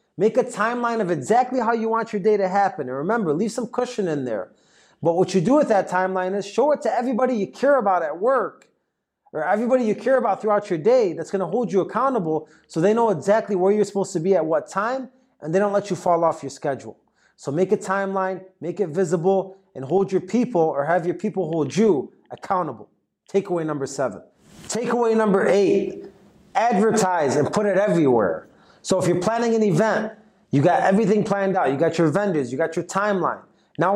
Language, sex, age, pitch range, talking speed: English, male, 30-49, 175-215 Hz, 210 wpm